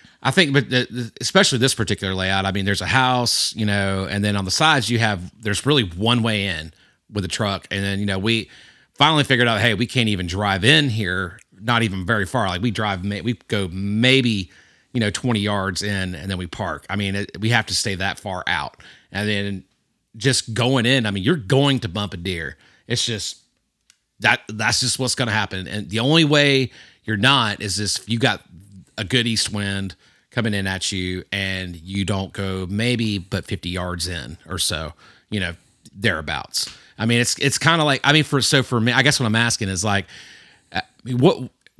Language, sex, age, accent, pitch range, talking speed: English, male, 30-49, American, 95-120 Hz, 215 wpm